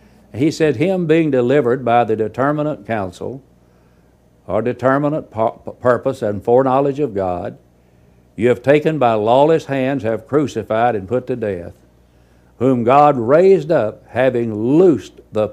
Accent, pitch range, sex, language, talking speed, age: American, 80-130 Hz, male, English, 135 wpm, 60-79